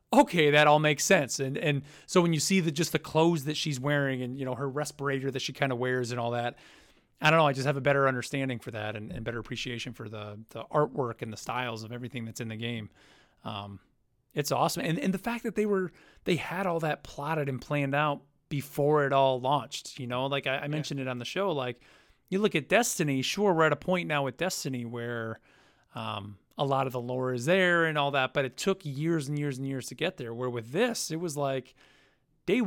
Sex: male